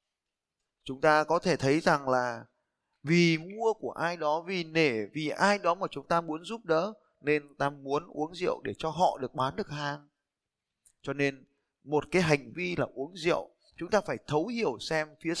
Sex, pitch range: male, 140-195 Hz